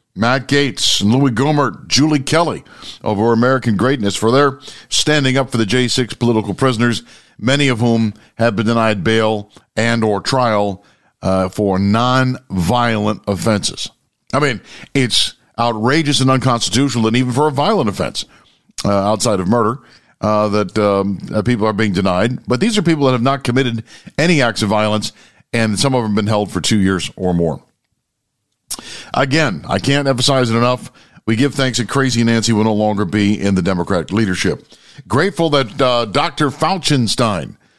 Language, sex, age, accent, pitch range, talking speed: English, male, 50-69, American, 105-130 Hz, 165 wpm